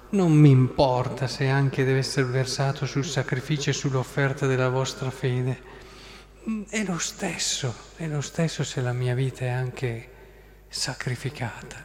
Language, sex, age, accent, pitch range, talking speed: Italian, male, 40-59, native, 125-160 Hz, 140 wpm